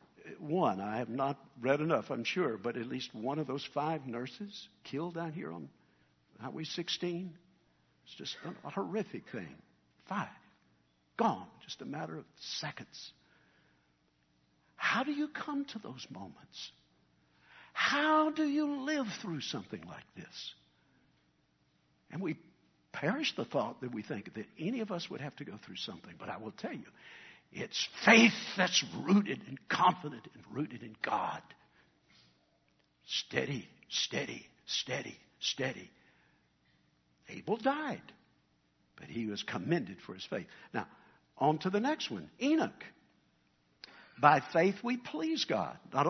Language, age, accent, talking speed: English, 60-79, American, 140 wpm